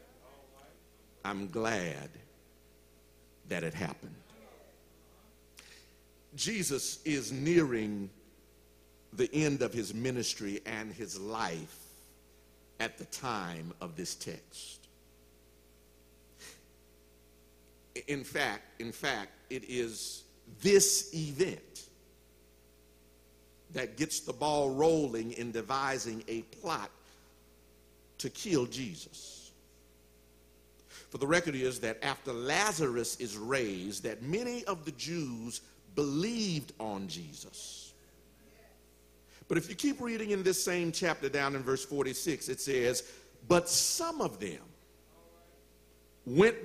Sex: male